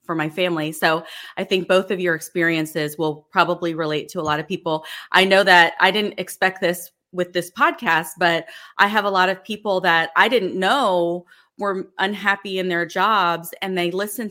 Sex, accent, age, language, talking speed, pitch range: female, American, 30-49, English, 195 wpm, 170-200 Hz